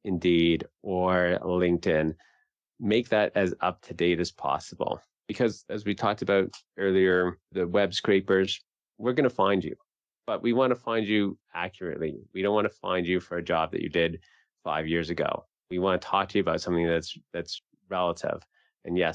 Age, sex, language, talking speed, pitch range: 30-49, male, English, 180 wpm, 85-100 Hz